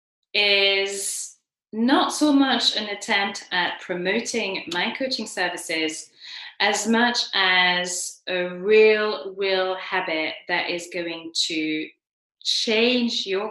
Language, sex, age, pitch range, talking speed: English, female, 20-39, 180-235 Hz, 105 wpm